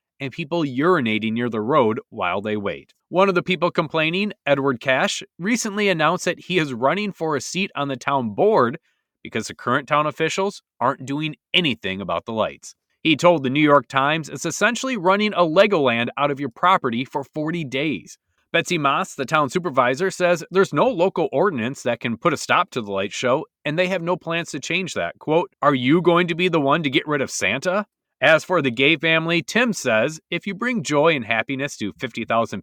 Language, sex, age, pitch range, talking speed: English, male, 30-49, 135-185 Hz, 210 wpm